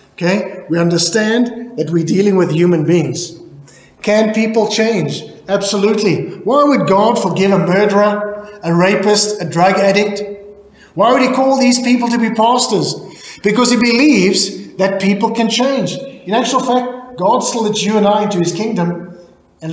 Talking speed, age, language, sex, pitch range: 160 wpm, 30-49, English, male, 185-230 Hz